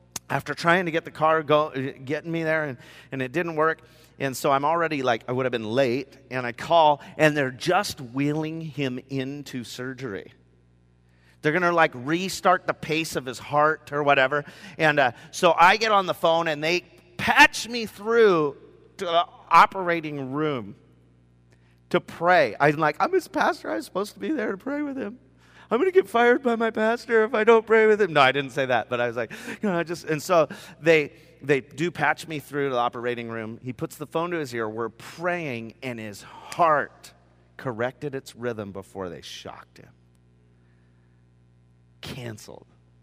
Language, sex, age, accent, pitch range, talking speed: English, male, 30-49, American, 105-160 Hz, 190 wpm